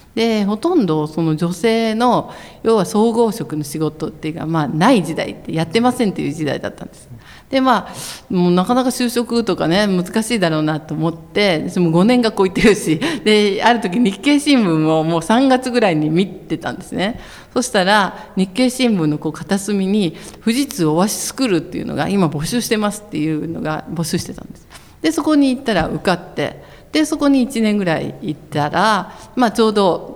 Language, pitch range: Japanese, 160-230 Hz